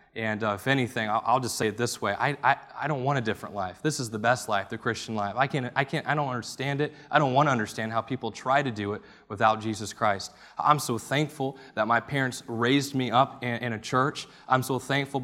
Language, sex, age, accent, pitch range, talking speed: English, male, 20-39, American, 110-130 Hz, 250 wpm